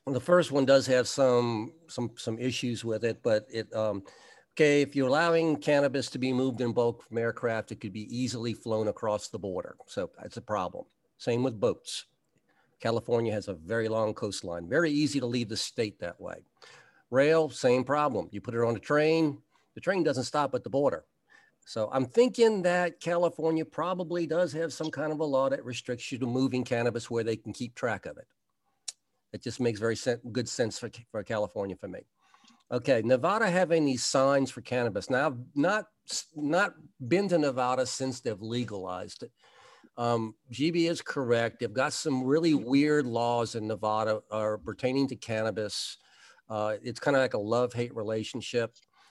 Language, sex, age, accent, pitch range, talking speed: English, male, 50-69, American, 115-150 Hz, 185 wpm